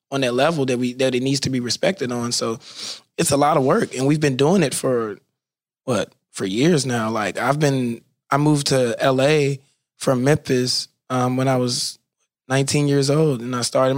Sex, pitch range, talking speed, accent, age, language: male, 125-145 Hz, 200 wpm, American, 20-39, English